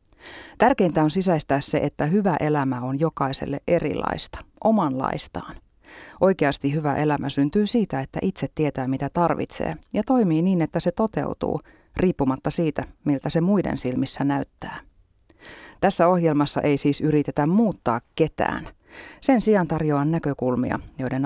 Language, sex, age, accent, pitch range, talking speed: Finnish, female, 30-49, native, 135-175 Hz, 130 wpm